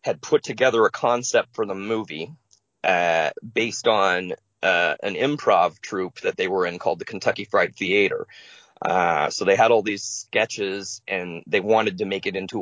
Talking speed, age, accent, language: 180 wpm, 30-49, American, English